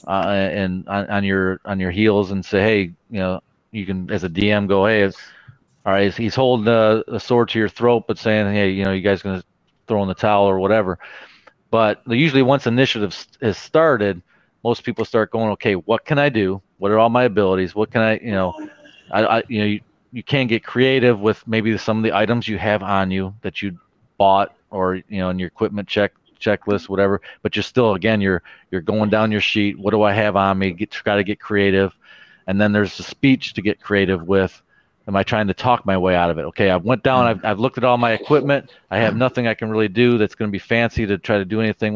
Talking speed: 245 wpm